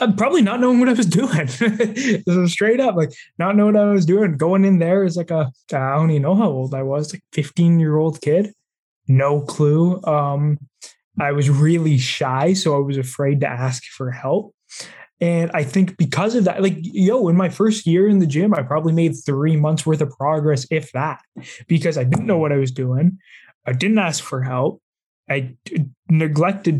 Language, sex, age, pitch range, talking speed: English, male, 20-39, 145-190 Hz, 210 wpm